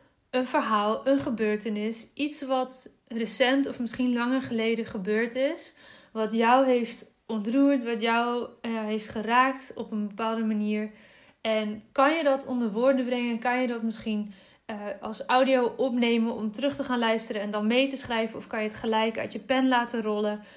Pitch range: 215-255 Hz